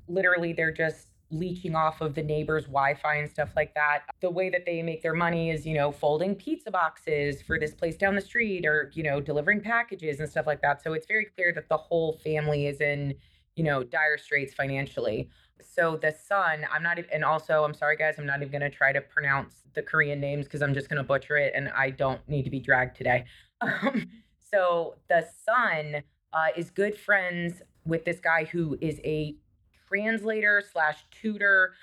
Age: 20-39